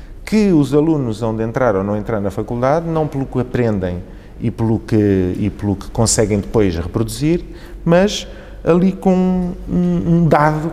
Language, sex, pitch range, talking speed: Portuguese, male, 100-135 Hz, 150 wpm